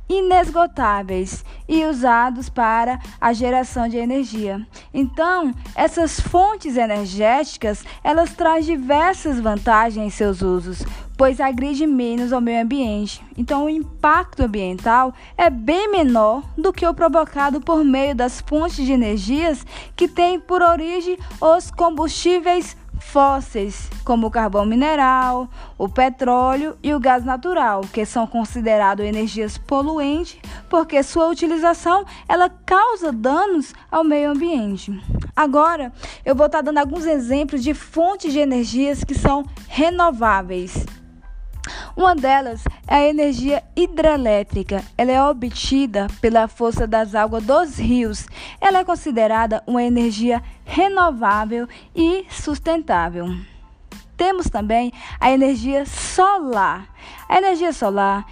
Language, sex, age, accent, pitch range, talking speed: Portuguese, female, 10-29, Brazilian, 235-330 Hz, 120 wpm